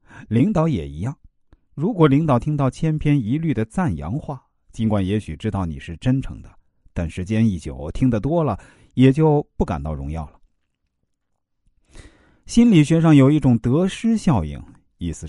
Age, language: 50-69, Chinese